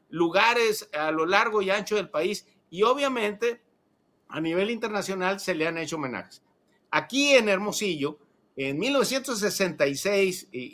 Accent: Mexican